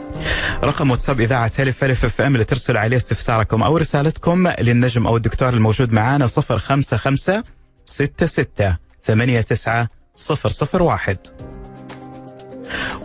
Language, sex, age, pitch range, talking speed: Arabic, male, 30-49, 110-150 Hz, 80 wpm